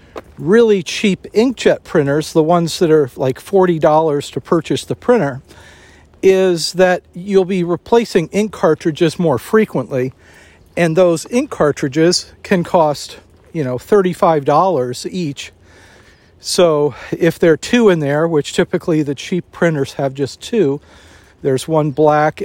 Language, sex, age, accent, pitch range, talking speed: English, male, 50-69, American, 135-180 Hz, 135 wpm